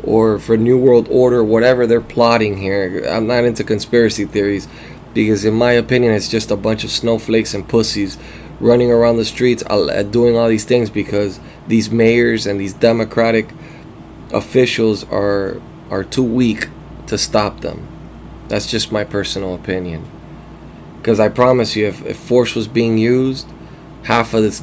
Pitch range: 100-120 Hz